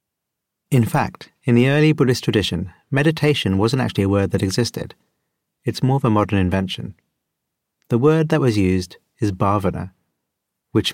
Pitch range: 95-120 Hz